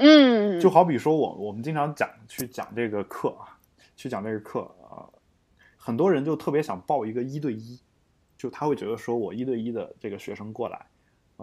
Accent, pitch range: native, 110-185 Hz